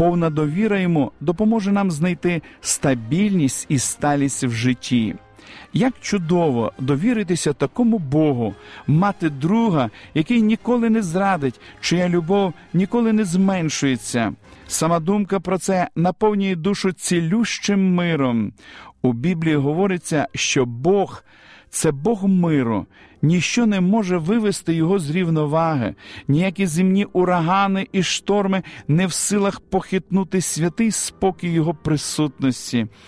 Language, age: Ukrainian, 50-69